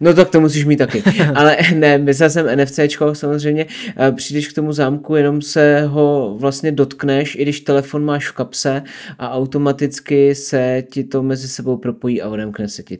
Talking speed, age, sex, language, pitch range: 180 wpm, 20-39, male, Czech, 120-145 Hz